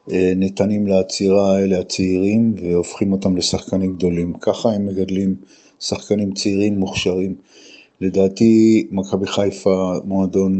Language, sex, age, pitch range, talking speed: Hebrew, male, 50-69, 95-100 Hz, 100 wpm